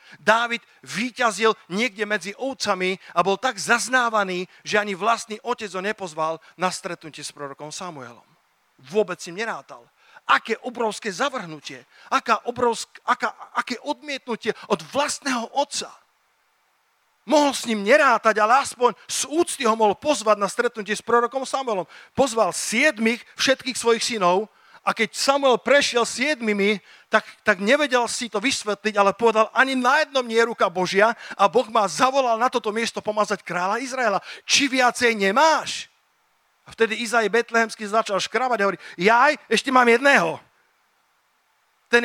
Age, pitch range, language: 40-59, 200-245 Hz, Slovak